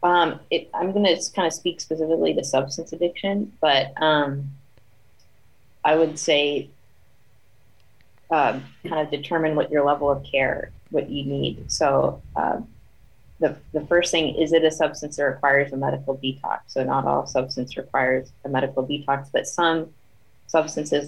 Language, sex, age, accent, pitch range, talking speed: English, female, 20-39, American, 130-150 Hz, 155 wpm